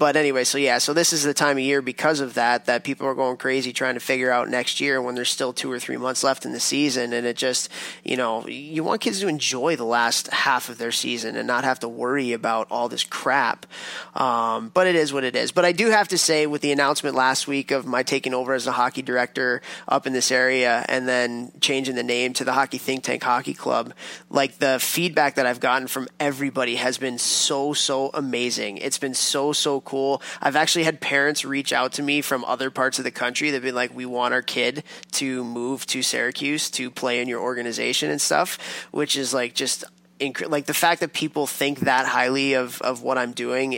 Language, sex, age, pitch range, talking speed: English, male, 20-39, 125-145 Hz, 235 wpm